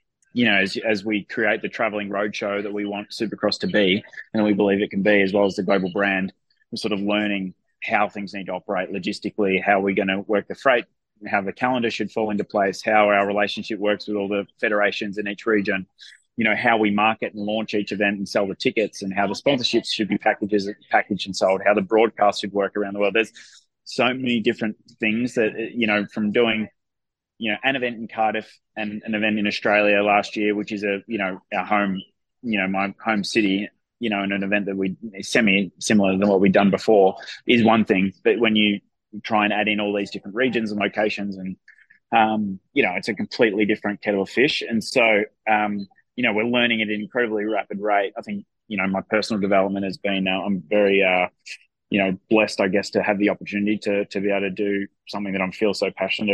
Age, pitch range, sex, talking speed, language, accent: 20-39, 100-110 Hz, male, 230 wpm, English, Australian